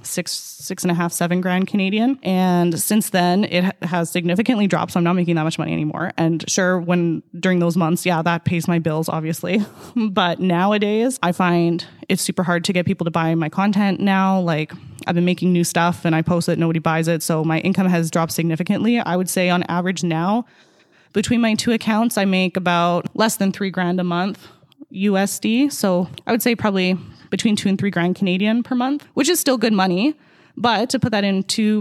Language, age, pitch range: English, 20-39, 170-195 Hz